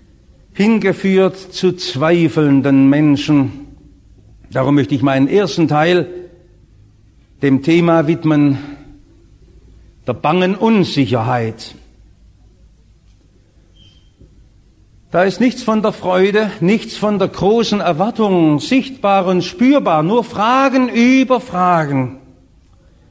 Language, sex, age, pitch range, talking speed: English, male, 60-79, 135-195 Hz, 90 wpm